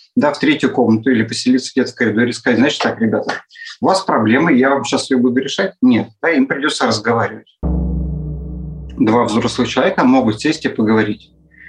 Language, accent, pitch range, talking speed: Russian, native, 110-145 Hz, 175 wpm